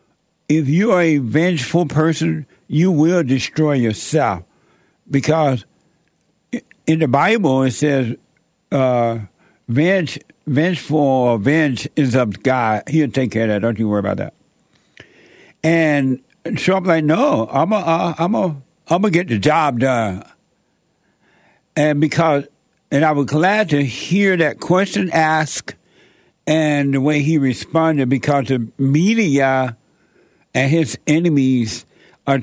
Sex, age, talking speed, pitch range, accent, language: male, 60-79, 135 wpm, 130-165 Hz, American, English